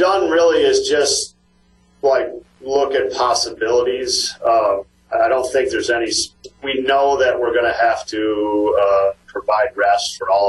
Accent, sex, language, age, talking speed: American, male, English, 40-59, 155 wpm